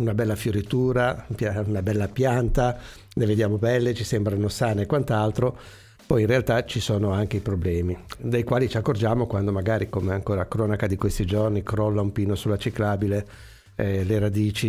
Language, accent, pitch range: Italian, native, 105-125 Hz